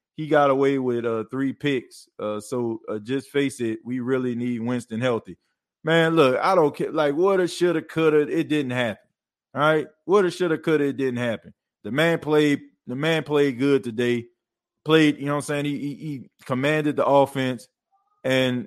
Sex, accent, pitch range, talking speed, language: male, American, 120-155 Hz, 210 wpm, English